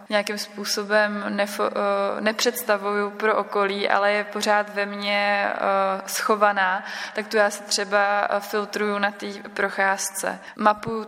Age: 20-39